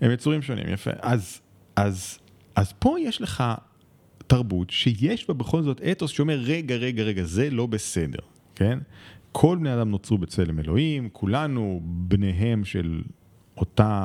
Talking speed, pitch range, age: 145 wpm, 95-130 Hz, 30-49